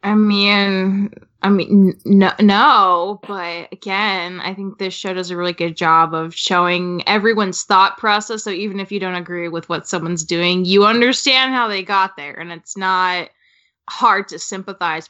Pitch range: 185-235 Hz